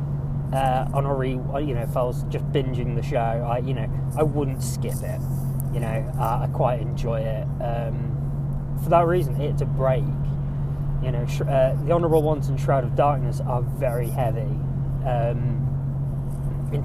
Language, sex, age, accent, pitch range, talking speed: English, male, 20-39, British, 135-145 Hz, 170 wpm